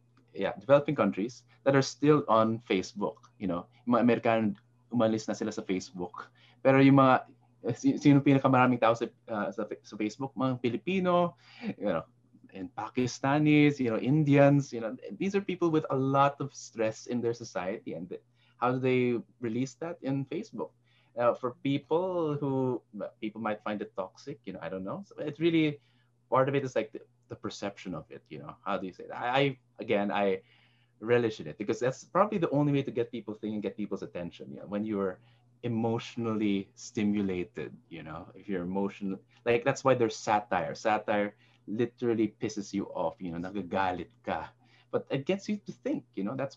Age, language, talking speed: 20-39, English, 180 wpm